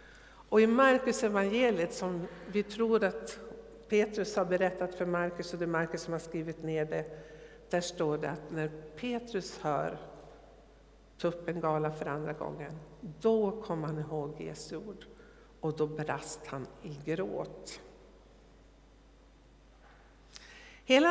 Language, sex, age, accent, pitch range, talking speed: Swedish, female, 60-79, native, 160-230 Hz, 135 wpm